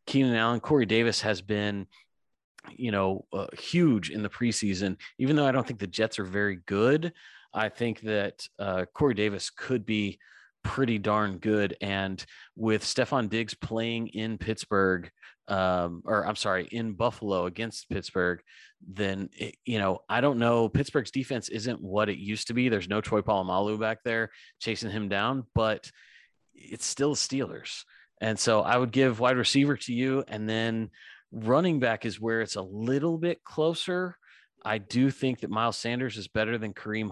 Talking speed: 170 wpm